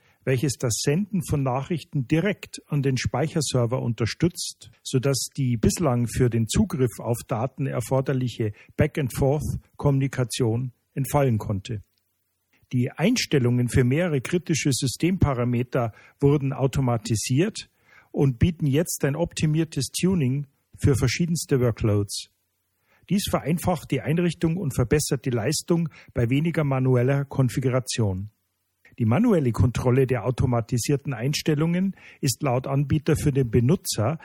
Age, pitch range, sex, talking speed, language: 50-69, 120-150 Hz, male, 110 wpm, German